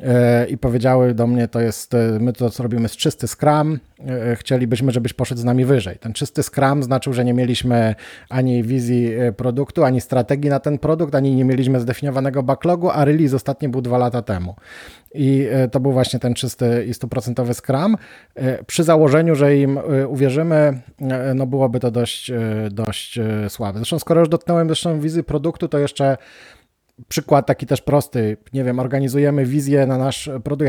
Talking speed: 165 wpm